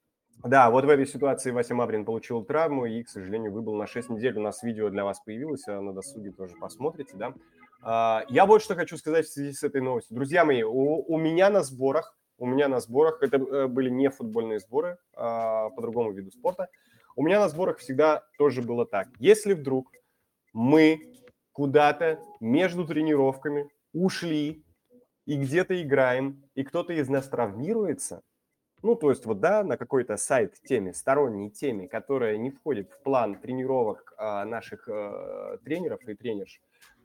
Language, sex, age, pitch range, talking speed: Russian, male, 20-39, 115-155 Hz, 165 wpm